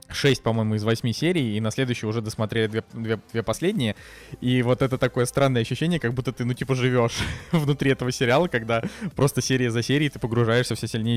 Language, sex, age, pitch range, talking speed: Russian, male, 20-39, 105-125 Hz, 205 wpm